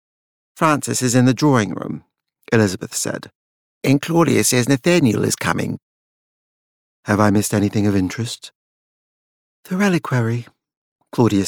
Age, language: 50-69, English